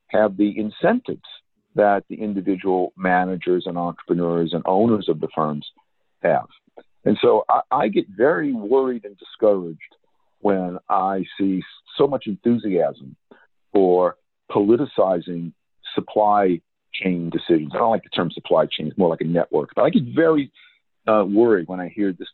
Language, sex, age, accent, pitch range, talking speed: English, male, 50-69, American, 95-155 Hz, 155 wpm